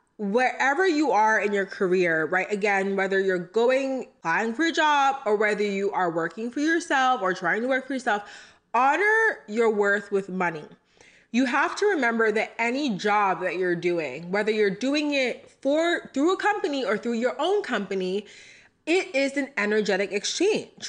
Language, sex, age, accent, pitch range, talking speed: English, female, 20-39, American, 200-255 Hz, 175 wpm